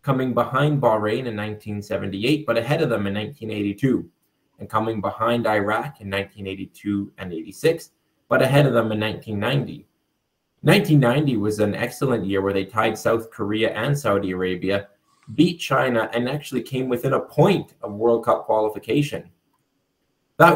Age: 20-39